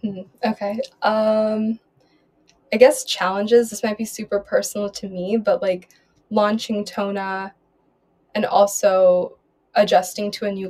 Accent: American